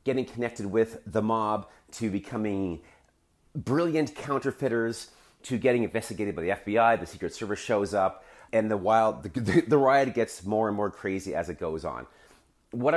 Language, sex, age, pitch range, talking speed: English, male, 30-49, 95-135 Hz, 165 wpm